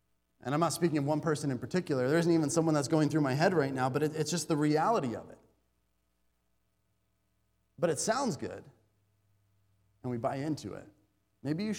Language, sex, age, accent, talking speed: English, male, 30-49, American, 195 wpm